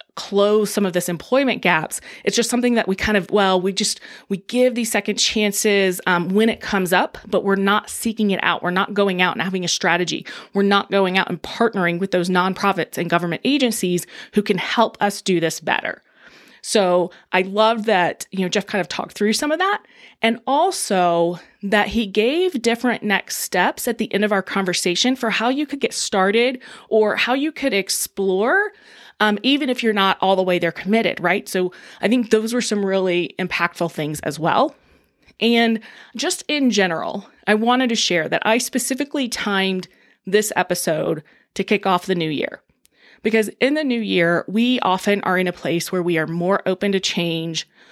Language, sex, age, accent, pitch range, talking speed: English, female, 20-39, American, 180-225 Hz, 200 wpm